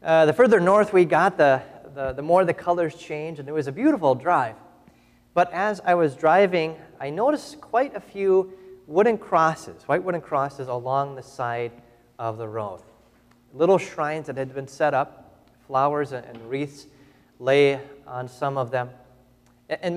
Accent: American